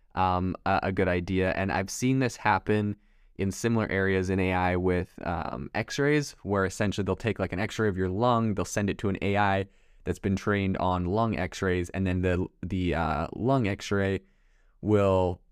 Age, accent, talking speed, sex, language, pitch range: 20-39, American, 180 wpm, male, English, 90-105 Hz